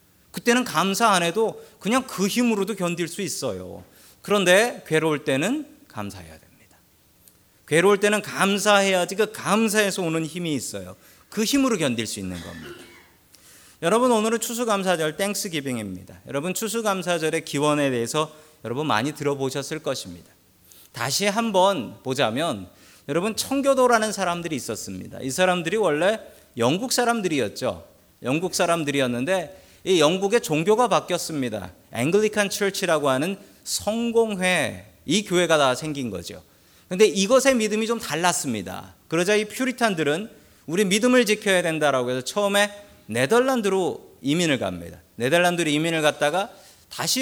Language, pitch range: Korean, 125-205 Hz